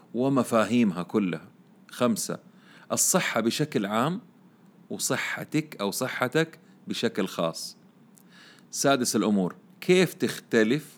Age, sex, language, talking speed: 40-59, male, Arabic, 80 wpm